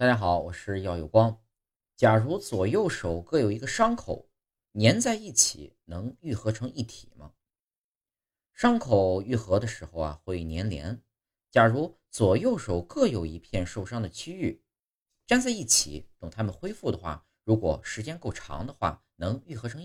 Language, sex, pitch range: Chinese, male, 85-120 Hz